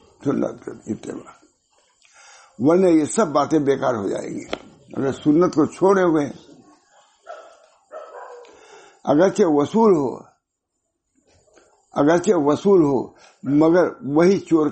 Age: 60-79